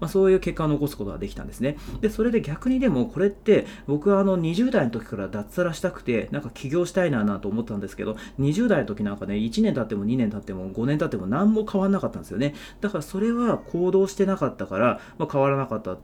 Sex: male